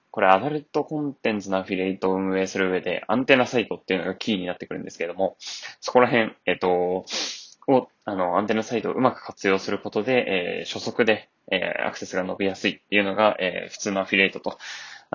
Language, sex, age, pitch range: Japanese, male, 20-39, 95-110 Hz